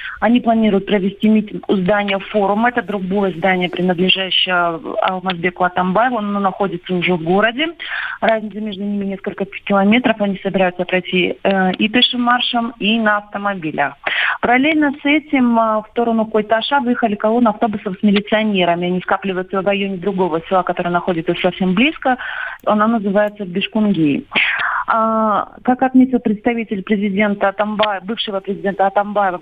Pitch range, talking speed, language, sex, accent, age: 190-230 Hz, 130 wpm, Russian, female, native, 30-49